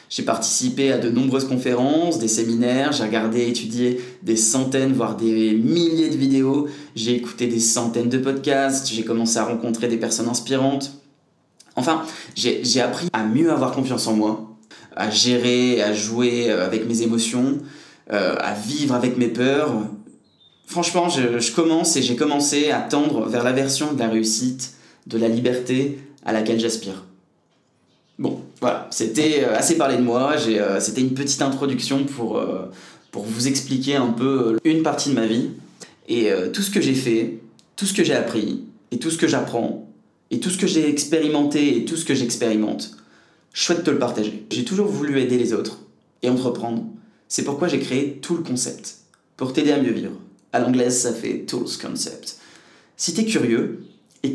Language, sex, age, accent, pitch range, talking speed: French, male, 20-39, French, 115-140 Hz, 180 wpm